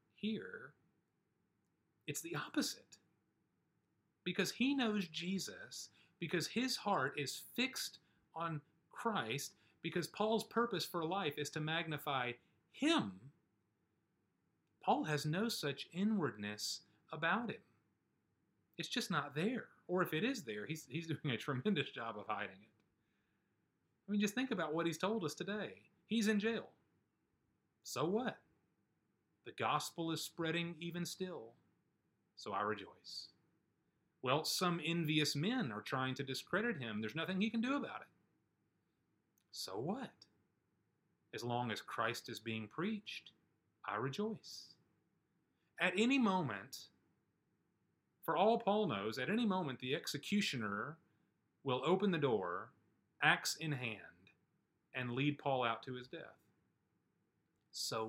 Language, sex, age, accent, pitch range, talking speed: English, male, 30-49, American, 145-210 Hz, 130 wpm